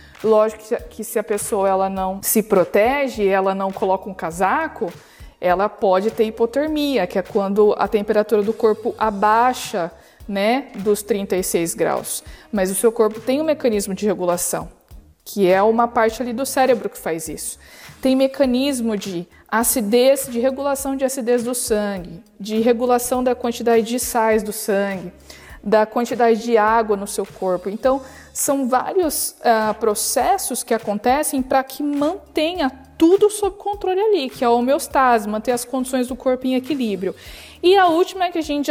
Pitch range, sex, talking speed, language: 210-275 Hz, female, 160 wpm, Portuguese